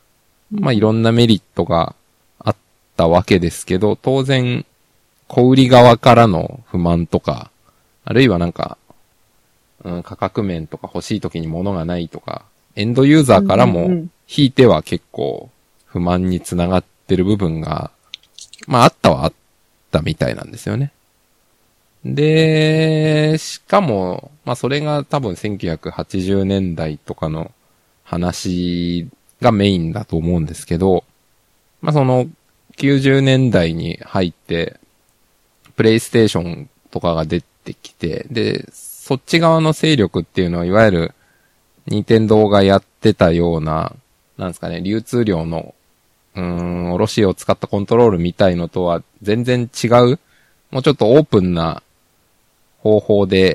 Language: Japanese